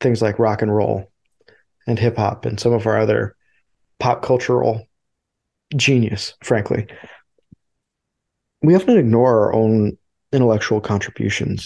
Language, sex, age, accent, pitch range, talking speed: English, male, 30-49, American, 105-135 Hz, 125 wpm